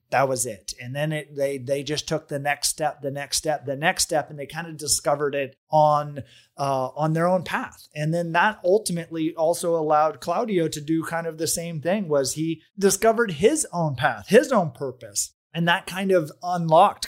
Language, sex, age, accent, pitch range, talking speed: English, male, 30-49, American, 140-170 Hz, 205 wpm